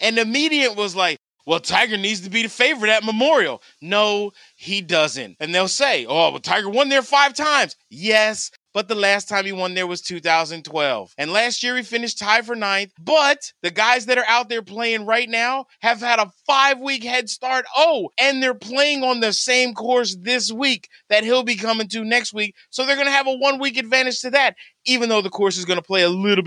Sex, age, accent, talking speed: male, 30-49, American, 220 wpm